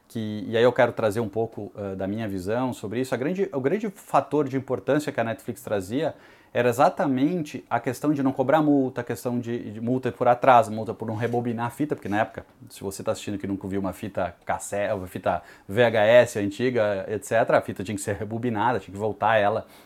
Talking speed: 225 wpm